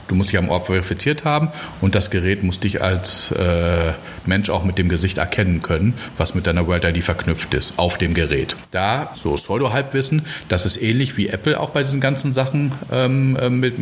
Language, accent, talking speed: German, German, 215 wpm